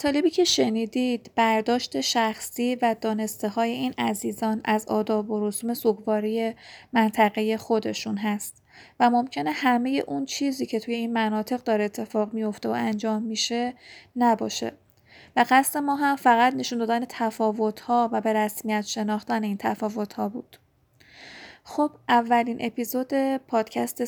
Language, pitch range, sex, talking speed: Persian, 215-245 Hz, female, 135 wpm